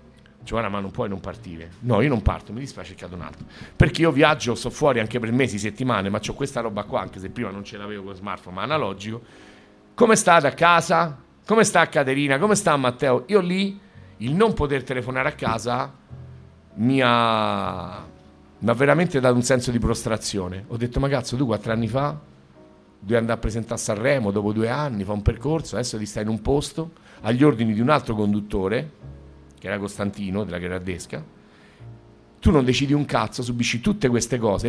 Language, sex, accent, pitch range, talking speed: Italian, male, native, 105-140 Hz, 200 wpm